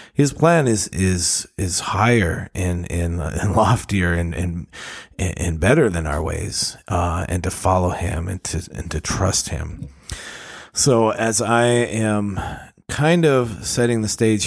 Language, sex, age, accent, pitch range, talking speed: English, male, 30-49, American, 85-105 Hz, 160 wpm